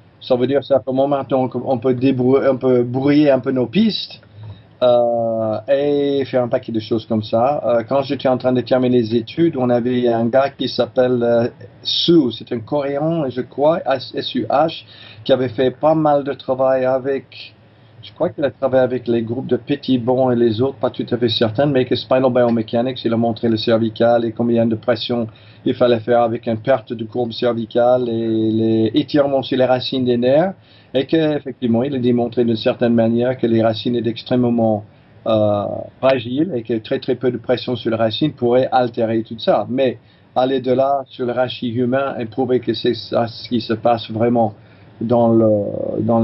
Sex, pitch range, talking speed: male, 115-130 Hz, 195 wpm